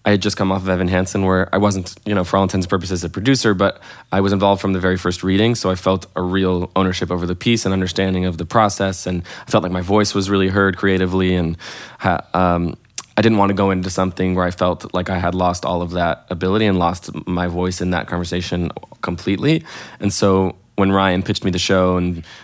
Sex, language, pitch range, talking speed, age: male, English, 85-95 Hz, 245 wpm, 20-39